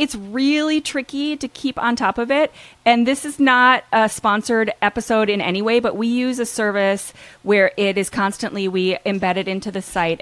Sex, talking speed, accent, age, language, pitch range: female, 200 wpm, American, 30-49, English, 195-245 Hz